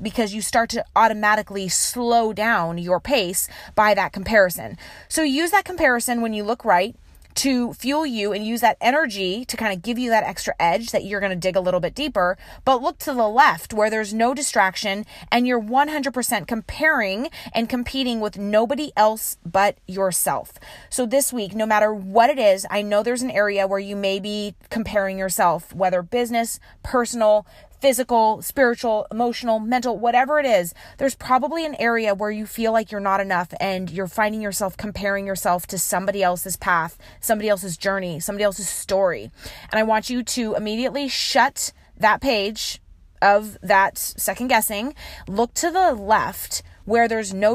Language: English